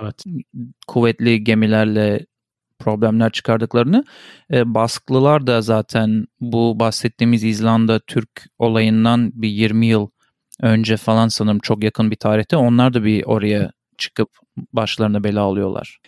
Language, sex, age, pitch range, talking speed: Turkish, male, 40-59, 115-145 Hz, 115 wpm